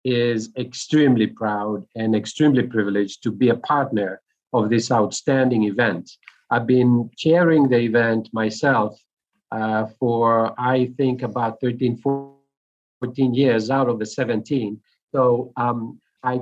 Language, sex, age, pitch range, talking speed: English, male, 50-69, 120-145 Hz, 130 wpm